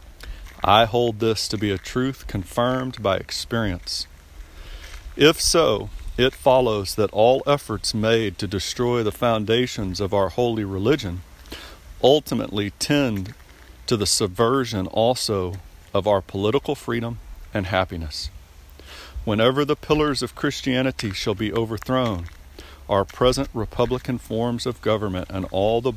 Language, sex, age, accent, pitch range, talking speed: English, male, 50-69, American, 80-115 Hz, 125 wpm